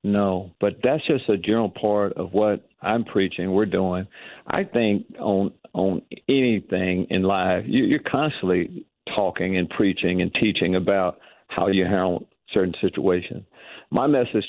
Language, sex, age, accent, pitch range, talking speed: English, male, 50-69, American, 95-120 Hz, 150 wpm